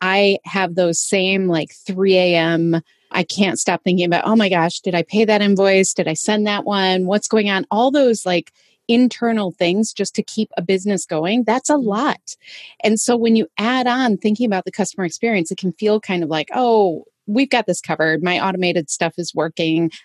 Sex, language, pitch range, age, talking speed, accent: female, English, 180-225 Hz, 30-49, 205 wpm, American